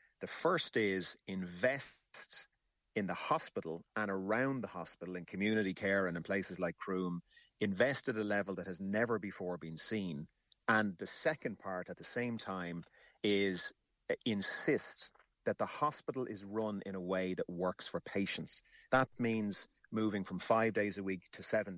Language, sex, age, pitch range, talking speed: English, male, 30-49, 90-110 Hz, 170 wpm